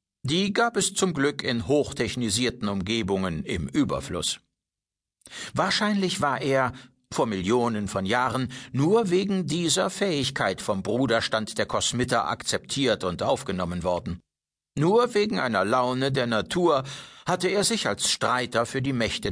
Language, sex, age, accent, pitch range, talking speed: German, male, 60-79, German, 105-145 Hz, 135 wpm